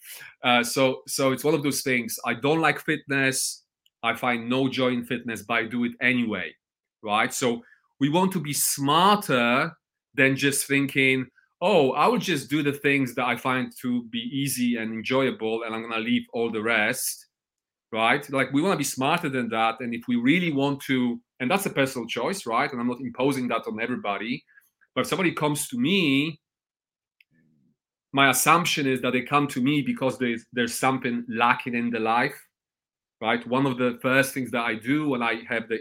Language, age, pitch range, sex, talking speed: English, 30-49, 120-140 Hz, male, 200 wpm